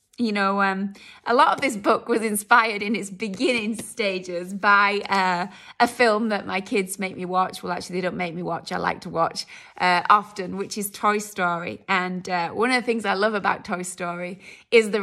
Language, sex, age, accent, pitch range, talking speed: English, female, 20-39, British, 190-225 Hz, 215 wpm